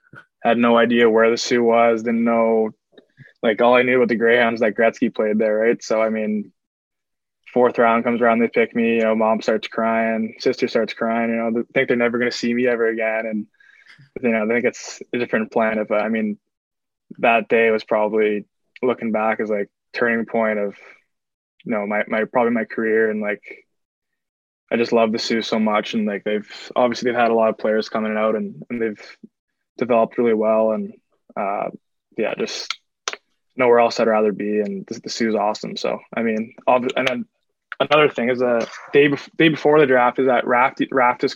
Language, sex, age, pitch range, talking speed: English, male, 20-39, 110-125 Hz, 210 wpm